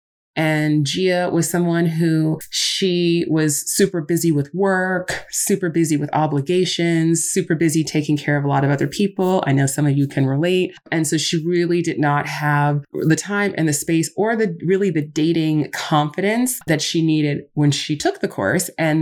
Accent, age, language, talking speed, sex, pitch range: American, 20-39, English, 185 wpm, female, 150-175 Hz